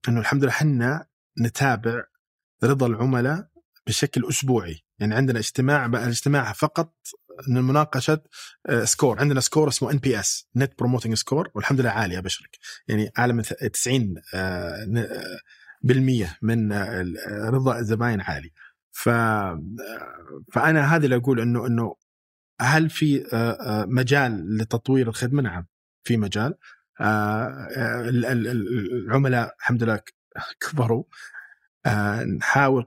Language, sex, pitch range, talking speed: Arabic, male, 115-140 Hz, 110 wpm